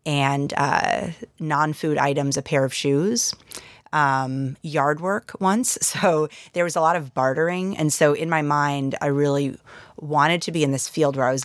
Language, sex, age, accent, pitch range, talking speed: English, female, 30-49, American, 140-170 Hz, 185 wpm